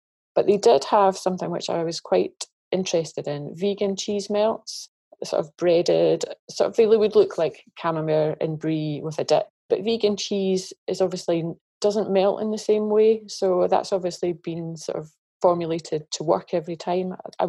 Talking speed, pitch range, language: 180 wpm, 165-215 Hz, English